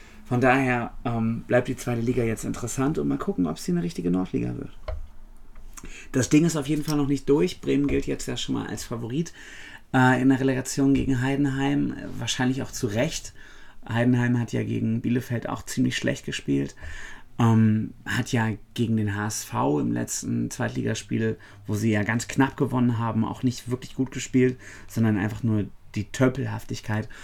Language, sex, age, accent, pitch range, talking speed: German, male, 30-49, German, 105-130 Hz, 175 wpm